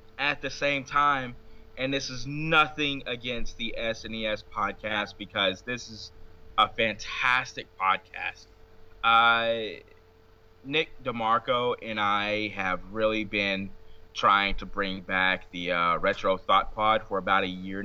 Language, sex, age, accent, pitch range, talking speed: English, male, 20-39, American, 90-115 Hz, 130 wpm